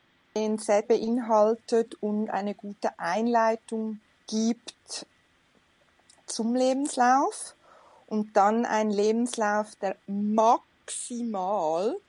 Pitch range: 205-235 Hz